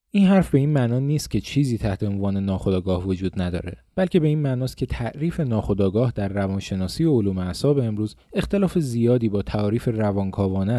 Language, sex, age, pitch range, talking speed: Persian, male, 30-49, 105-145 Hz, 170 wpm